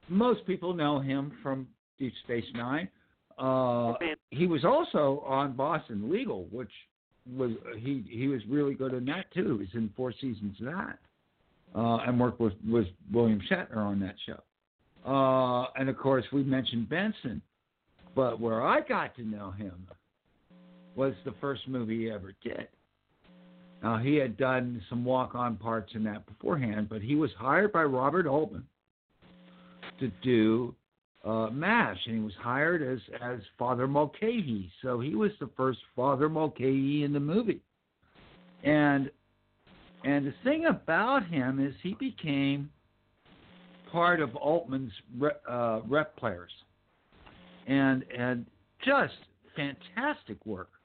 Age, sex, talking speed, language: 60-79, male, 145 wpm, English